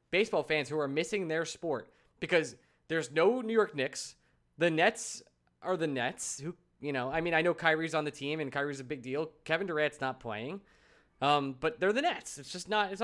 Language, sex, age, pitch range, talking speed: English, male, 20-39, 135-190 Hz, 215 wpm